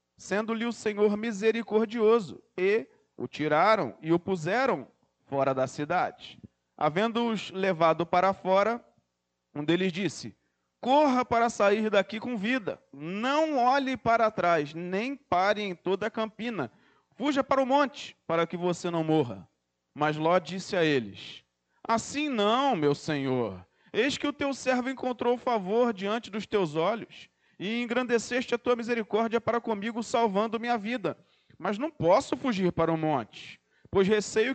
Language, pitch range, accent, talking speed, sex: Portuguese, 165-235 Hz, Brazilian, 150 wpm, male